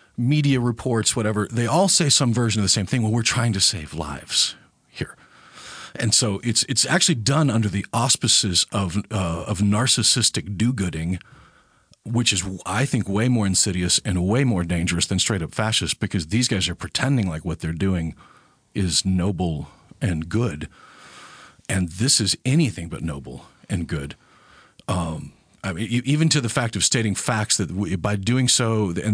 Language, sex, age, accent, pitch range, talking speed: English, male, 40-59, American, 90-120 Hz, 175 wpm